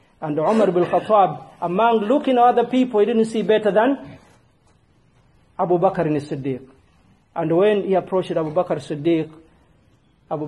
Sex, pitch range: male, 155-220 Hz